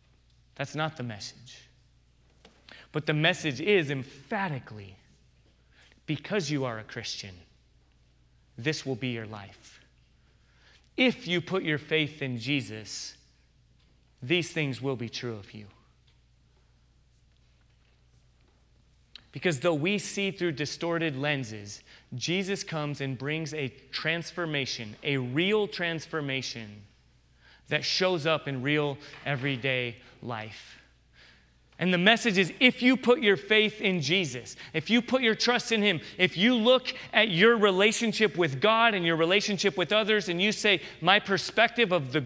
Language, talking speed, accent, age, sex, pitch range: English, 135 wpm, American, 30-49, male, 125-185 Hz